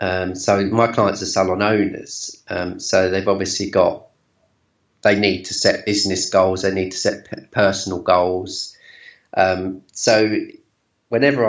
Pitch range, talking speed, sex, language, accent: 95-110 Hz, 140 wpm, male, English, British